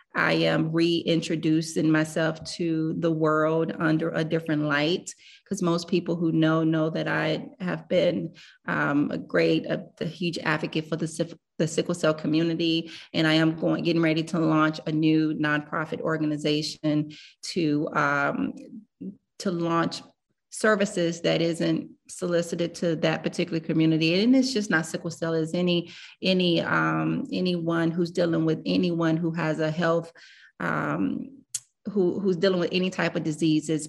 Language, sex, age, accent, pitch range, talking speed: Russian, female, 30-49, American, 160-175 Hz, 150 wpm